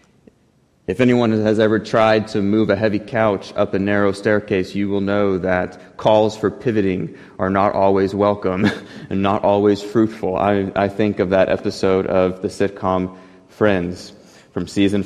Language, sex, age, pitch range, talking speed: English, male, 20-39, 95-105 Hz, 165 wpm